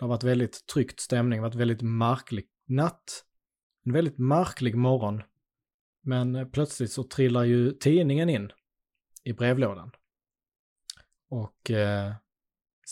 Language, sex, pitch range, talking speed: Swedish, male, 110-130 Hz, 125 wpm